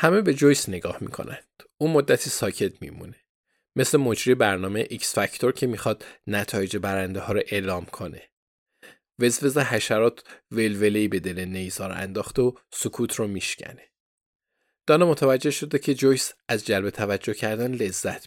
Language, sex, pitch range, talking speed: Persian, male, 105-140 Hz, 140 wpm